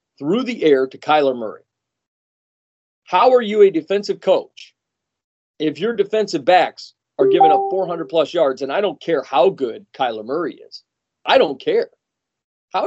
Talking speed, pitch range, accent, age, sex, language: 160 wpm, 140-215 Hz, American, 40-59, male, English